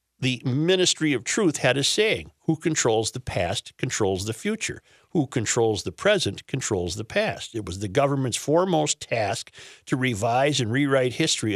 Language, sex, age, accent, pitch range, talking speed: English, male, 50-69, American, 115-150 Hz, 165 wpm